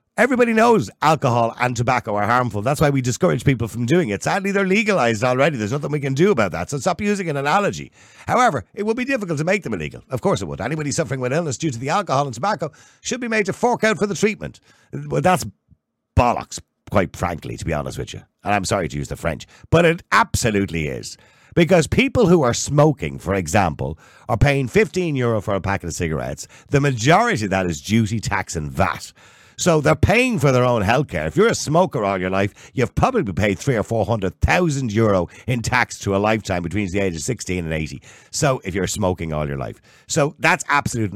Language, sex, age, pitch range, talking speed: English, male, 50-69, 90-145 Hz, 220 wpm